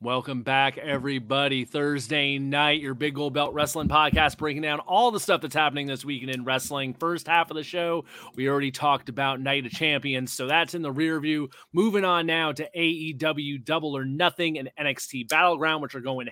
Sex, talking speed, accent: male, 200 wpm, American